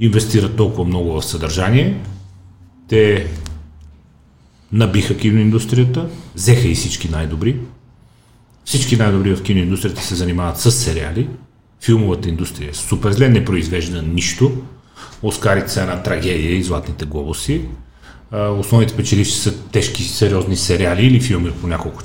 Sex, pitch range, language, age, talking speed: male, 85-115 Hz, Bulgarian, 40-59, 115 wpm